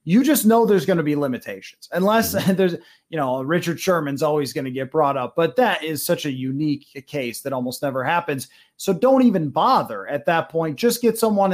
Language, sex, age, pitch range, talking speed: English, male, 30-49, 150-200 Hz, 215 wpm